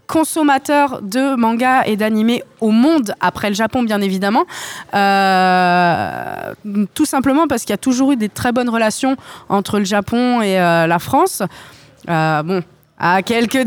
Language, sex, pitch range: French, female, 195-250 Hz